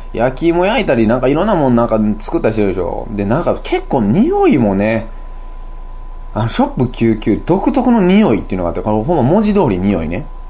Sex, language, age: male, Japanese, 20-39